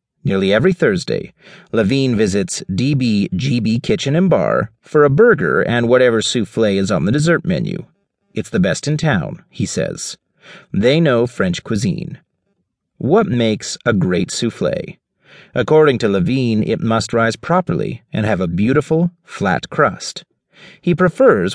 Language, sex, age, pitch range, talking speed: English, male, 40-59, 120-180 Hz, 140 wpm